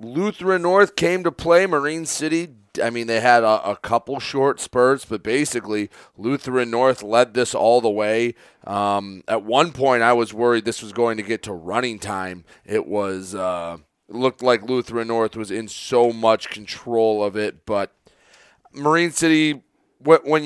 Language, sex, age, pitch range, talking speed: English, male, 30-49, 115-145 Hz, 175 wpm